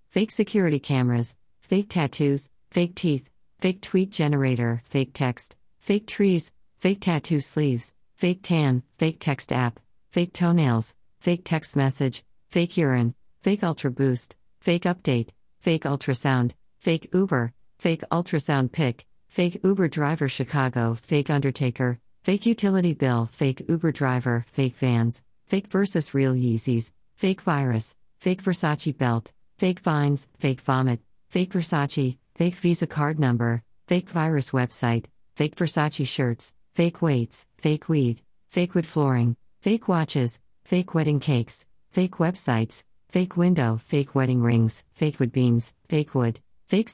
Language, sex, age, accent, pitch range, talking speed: English, female, 50-69, American, 125-170 Hz, 135 wpm